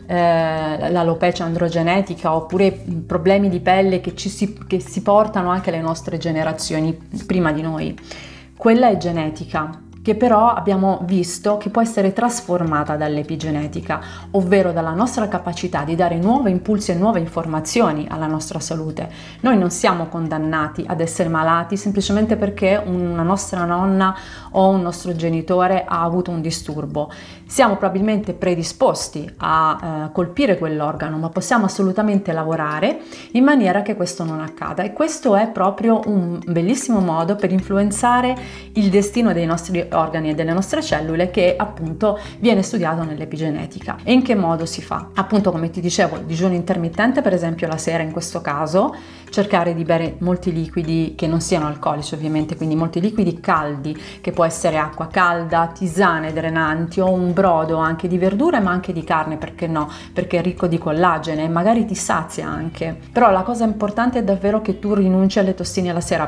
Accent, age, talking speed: native, 30-49, 165 wpm